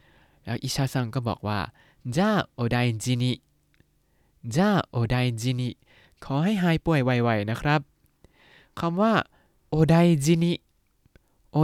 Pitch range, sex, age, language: 115-150 Hz, male, 20-39, Thai